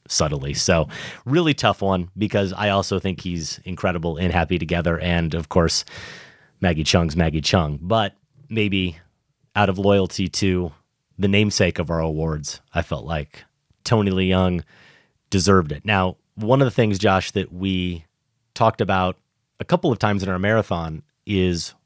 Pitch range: 90-110 Hz